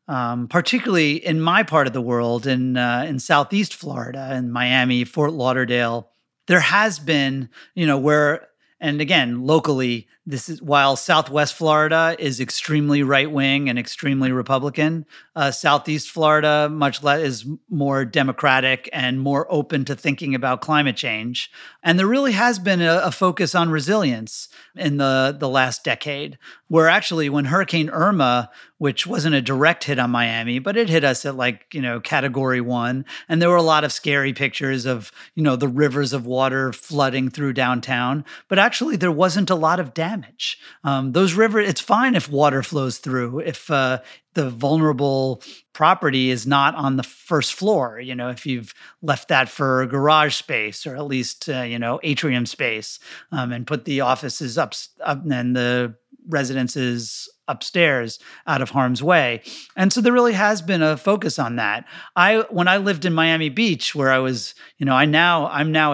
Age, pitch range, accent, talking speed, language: 30-49, 130-160 Hz, American, 175 wpm, English